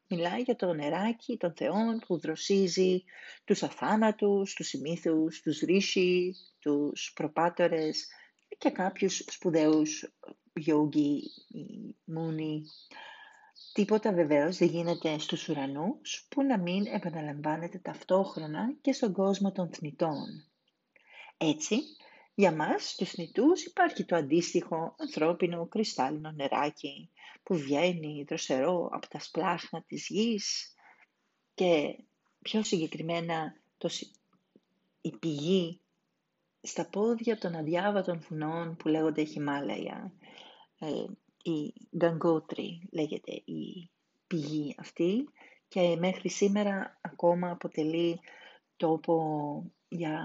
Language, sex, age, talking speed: Greek, female, 40-59, 100 wpm